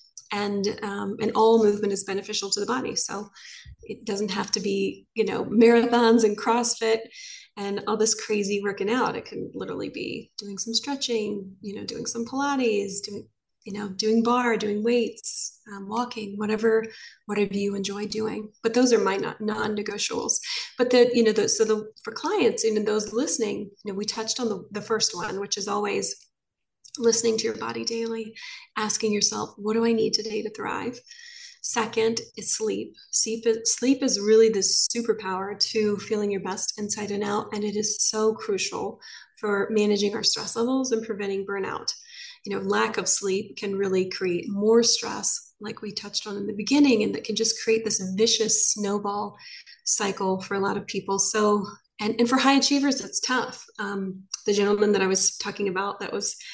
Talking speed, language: 185 wpm, English